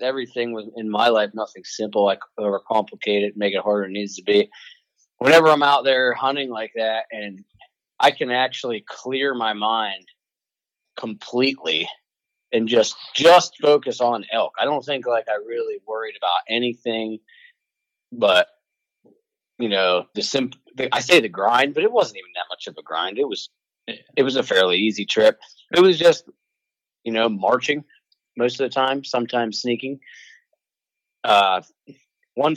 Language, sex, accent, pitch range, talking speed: English, male, American, 115-145 Hz, 160 wpm